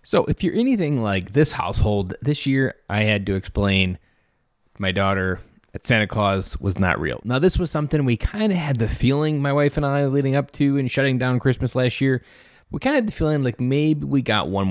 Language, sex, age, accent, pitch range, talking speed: English, male, 20-39, American, 100-135 Hz, 225 wpm